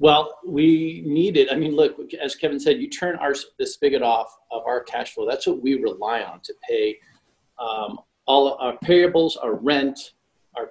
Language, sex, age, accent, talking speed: English, male, 40-59, American, 180 wpm